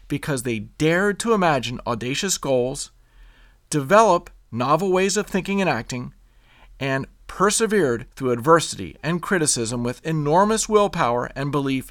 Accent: American